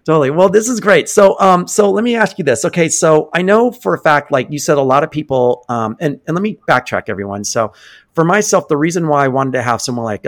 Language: English